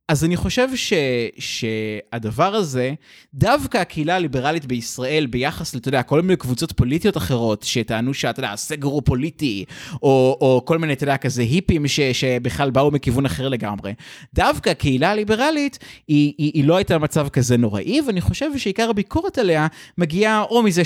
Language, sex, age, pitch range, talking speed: Hebrew, male, 20-39, 125-170 Hz, 160 wpm